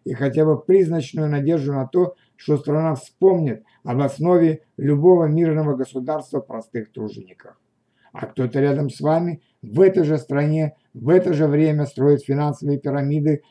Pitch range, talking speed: 135-160 Hz, 145 wpm